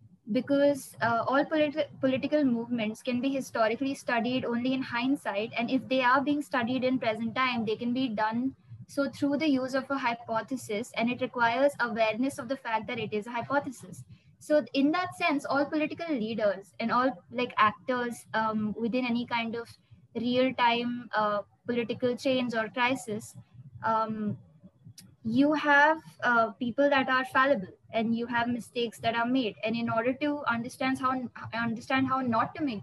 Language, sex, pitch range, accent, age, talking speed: English, female, 220-265 Hz, Indian, 20-39, 170 wpm